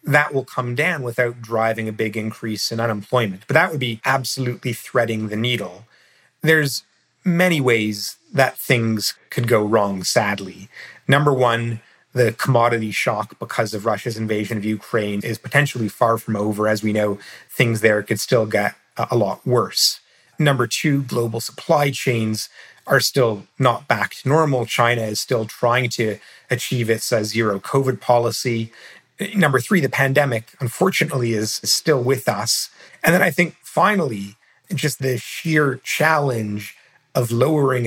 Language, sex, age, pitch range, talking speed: English, male, 30-49, 110-135 Hz, 150 wpm